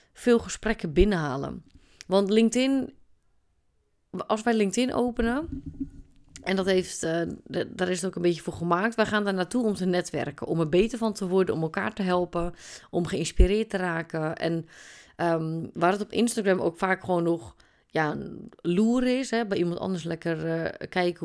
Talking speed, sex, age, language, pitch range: 180 wpm, female, 30-49, Dutch, 170-210 Hz